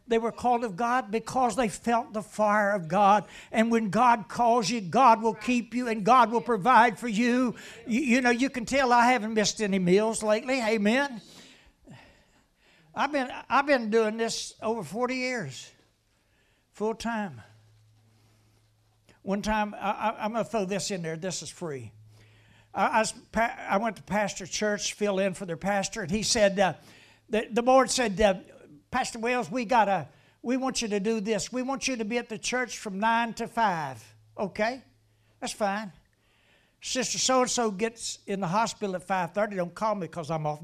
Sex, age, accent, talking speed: male, 60-79, American, 185 wpm